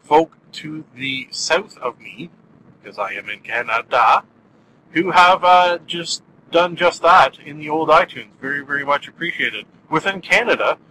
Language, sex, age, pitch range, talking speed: English, male, 40-59, 145-190 Hz, 155 wpm